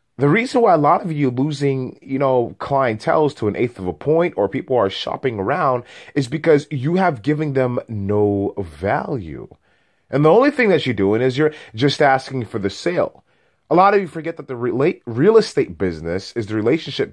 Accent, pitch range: American, 105-160 Hz